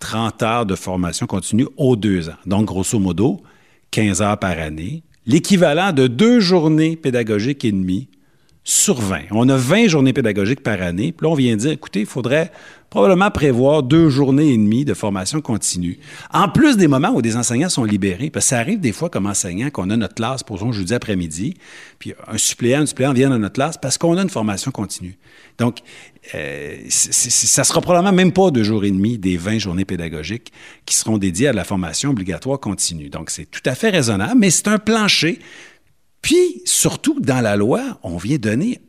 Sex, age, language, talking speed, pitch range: male, 50-69, French, 205 wpm, 100-165 Hz